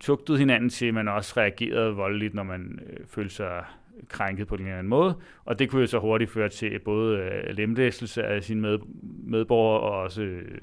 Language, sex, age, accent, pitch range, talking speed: Danish, male, 30-49, native, 105-125 Hz, 205 wpm